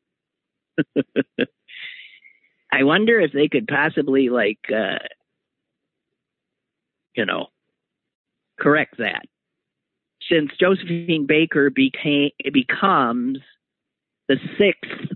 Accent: American